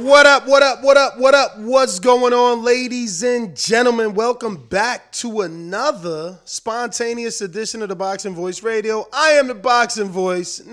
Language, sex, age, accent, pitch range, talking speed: English, male, 20-39, American, 170-230 Hz, 175 wpm